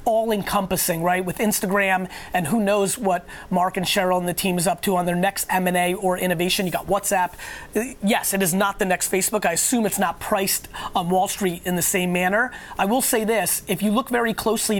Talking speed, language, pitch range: 220 wpm, English, 185-215 Hz